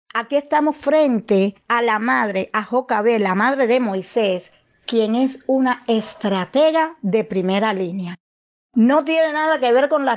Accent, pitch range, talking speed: American, 220-280 Hz, 155 wpm